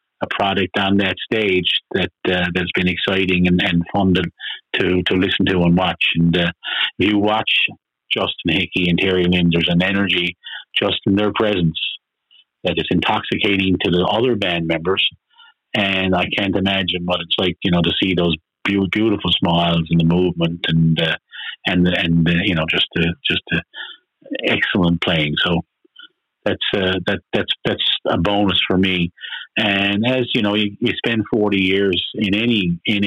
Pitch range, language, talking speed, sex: 90-100 Hz, English, 175 wpm, male